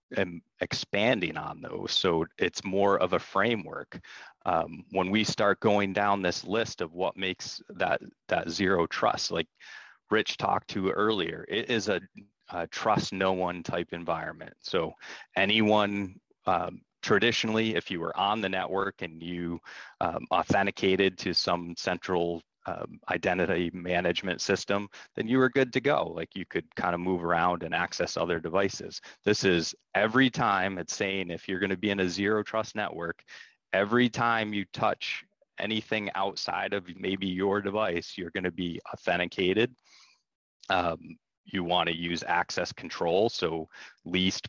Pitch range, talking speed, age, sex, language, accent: 90-105 Hz, 160 wpm, 30-49, male, English, American